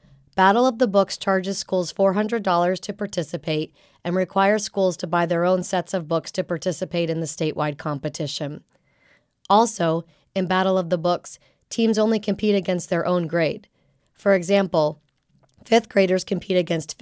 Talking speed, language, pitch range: 155 wpm, English, 170-200 Hz